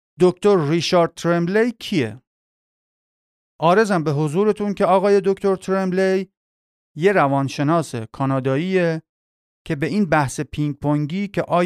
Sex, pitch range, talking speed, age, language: male, 145-190 Hz, 110 wpm, 40-59, Persian